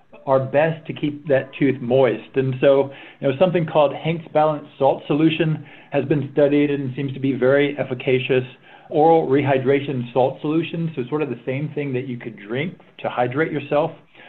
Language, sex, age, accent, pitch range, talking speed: English, male, 50-69, American, 125-150 Hz, 180 wpm